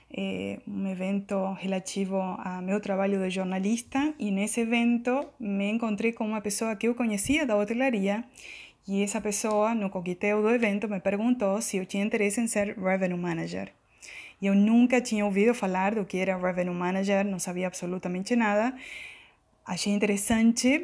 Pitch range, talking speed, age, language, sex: 195-230 Hz, 160 wpm, 20-39, Portuguese, female